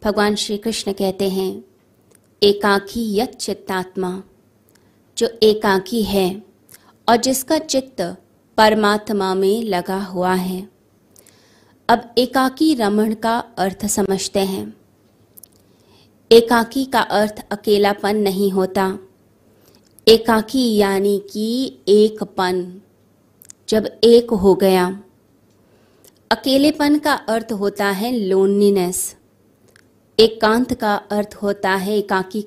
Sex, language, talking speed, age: female, Hindi, 100 wpm, 20-39